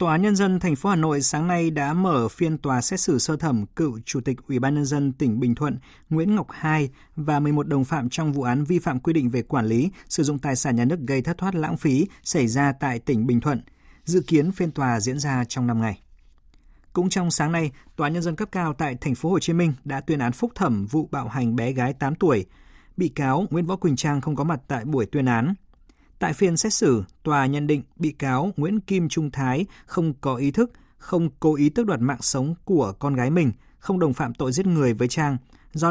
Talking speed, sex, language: 245 wpm, male, Vietnamese